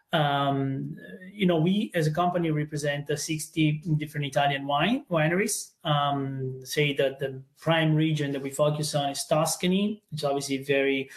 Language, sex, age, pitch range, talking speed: English, male, 30-49, 140-160 Hz, 155 wpm